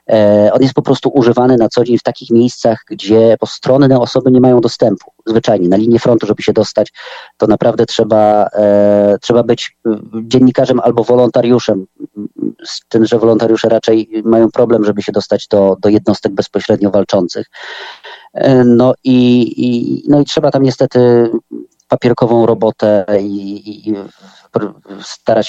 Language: Polish